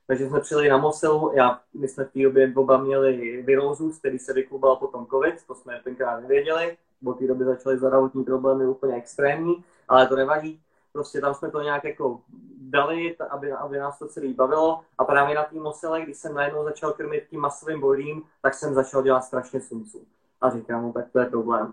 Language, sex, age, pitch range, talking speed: Slovak, male, 20-39, 135-160 Hz, 200 wpm